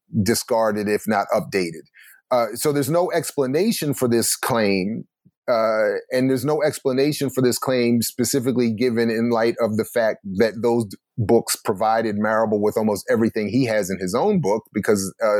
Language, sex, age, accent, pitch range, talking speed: English, male, 30-49, American, 110-130 Hz, 170 wpm